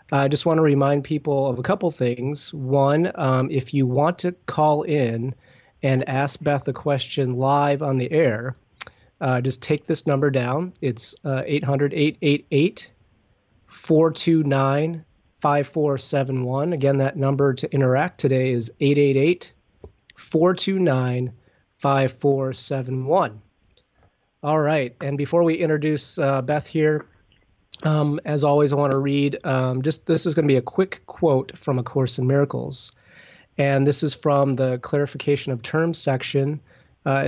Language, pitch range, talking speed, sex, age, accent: English, 125-150 Hz, 135 wpm, male, 30-49, American